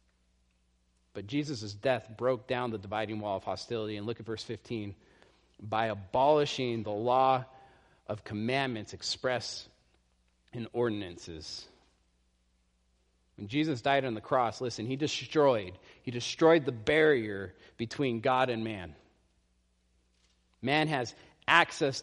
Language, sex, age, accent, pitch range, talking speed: English, male, 40-59, American, 95-135 Hz, 120 wpm